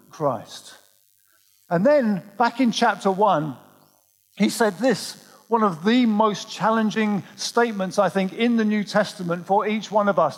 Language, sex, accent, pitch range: English, male, British, 190-240 Hz